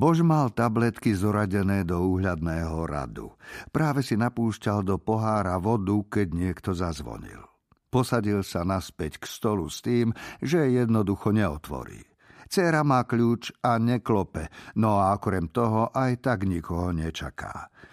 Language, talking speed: Slovak, 130 wpm